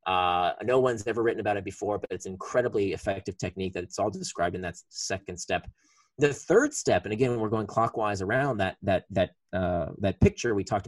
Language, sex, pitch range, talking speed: English, male, 115-180 Hz, 215 wpm